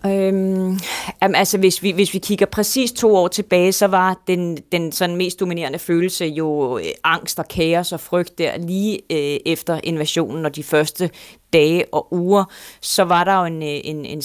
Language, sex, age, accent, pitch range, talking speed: Danish, female, 30-49, native, 165-195 Hz, 175 wpm